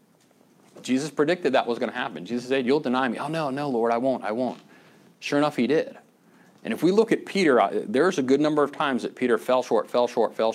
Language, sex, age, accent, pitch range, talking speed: English, male, 40-59, American, 110-145 Hz, 245 wpm